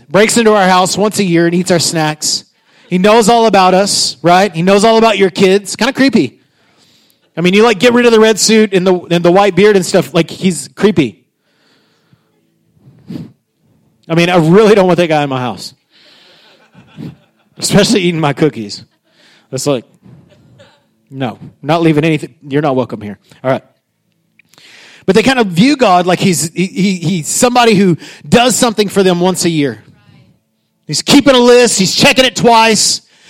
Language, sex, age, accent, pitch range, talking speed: English, male, 30-49, American, 160-215 Hz, 185 wpm